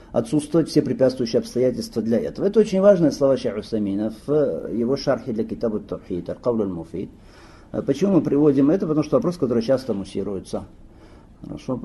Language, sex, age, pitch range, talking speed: Russian, male, 50-69, 110-150 Hz, 145 wpm